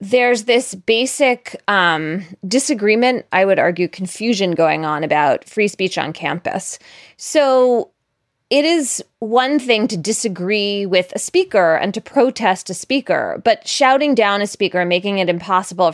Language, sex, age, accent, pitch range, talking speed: English, female, 20-39, American, 180-245 Hz, 150 wpm